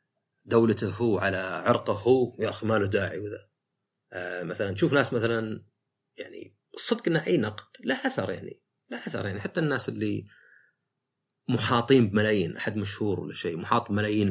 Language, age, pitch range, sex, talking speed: Arabic, 30-49, 105-145 Hz, male, 160 wpm